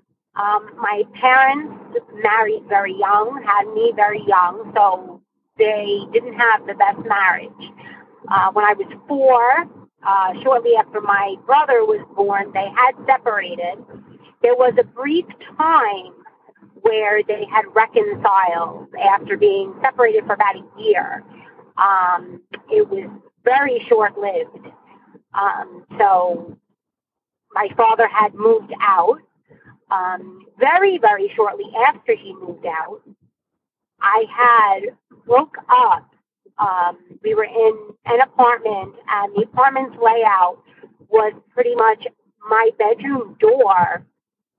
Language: English